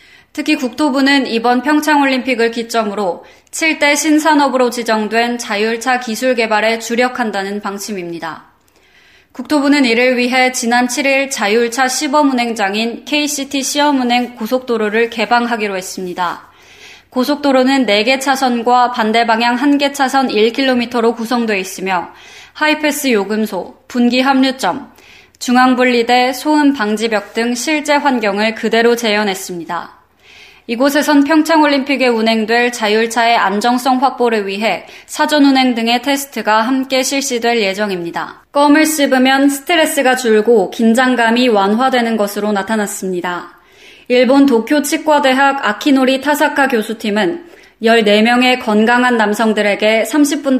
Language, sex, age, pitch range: Korean, female, 20-39, 220-275 Hz